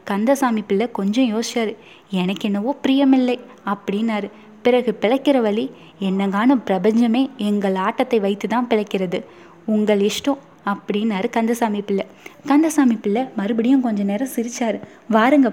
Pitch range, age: 205-240 Hz, 20-39